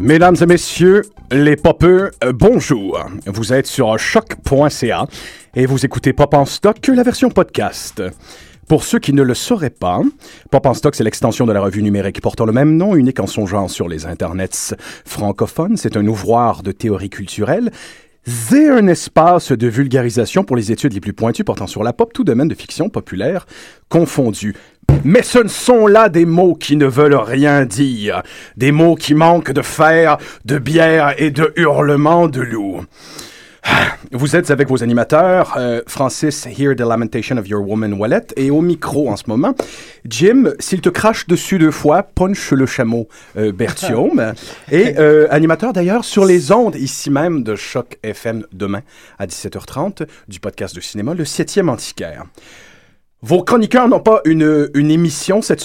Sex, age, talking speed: male, 40-59, 175 wpm